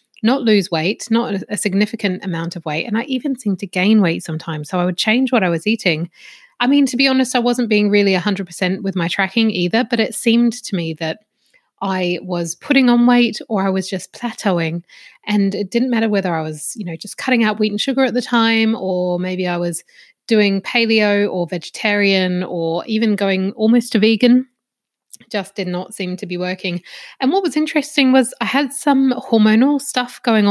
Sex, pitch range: female, 185-230 Hz